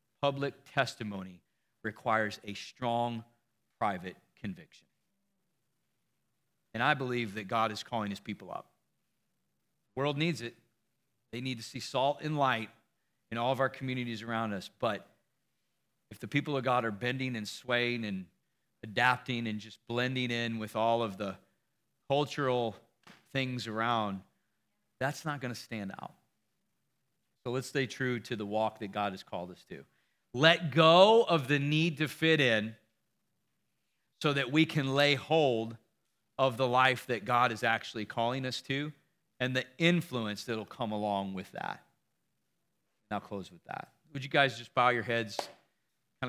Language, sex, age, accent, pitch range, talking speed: English, male, 40-59, American, 115-145 Hz, 155 wpm